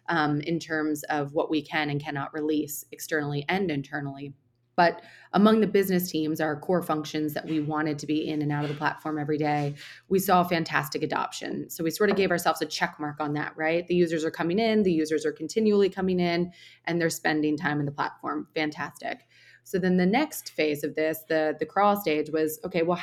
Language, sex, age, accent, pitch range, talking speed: English, female, 20-39, American, 150-175 Hz, 215 wpm